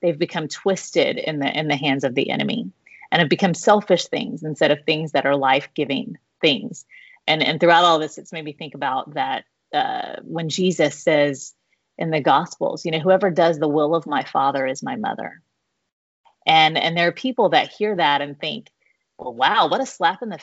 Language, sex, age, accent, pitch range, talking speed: English, female, 30-49, American, 155-195 Hz, 210 wpm